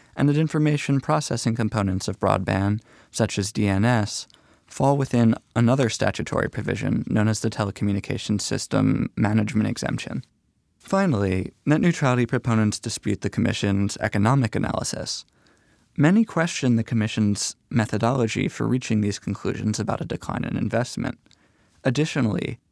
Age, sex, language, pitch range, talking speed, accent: 20-39, male, English, 105-130 Hz, 120 wpm, American